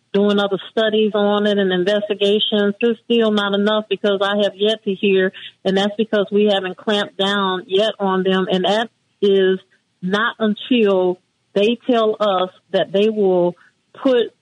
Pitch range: 185-205 Hz